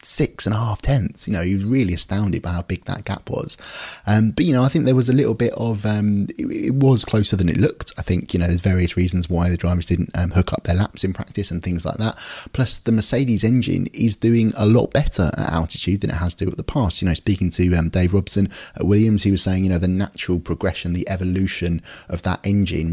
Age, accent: 30-49, British